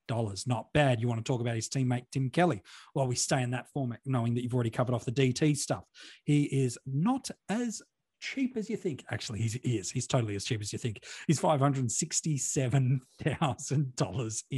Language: English